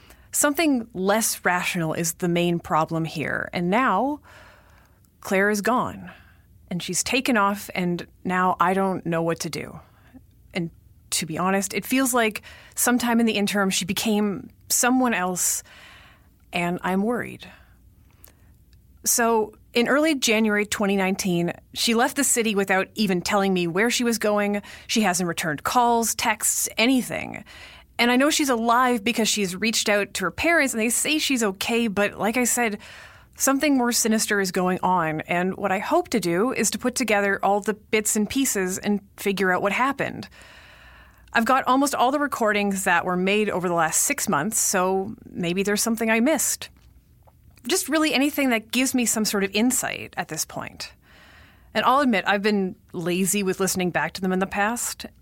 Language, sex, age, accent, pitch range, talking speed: English, female, 30-49, American, 180-235 Hz, 175 wpm